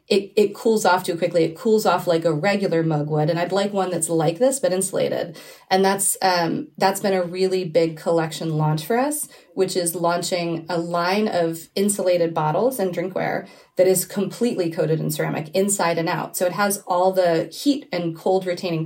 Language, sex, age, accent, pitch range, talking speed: English, female, 30-49, American, 170-195 Hz, 200 wpm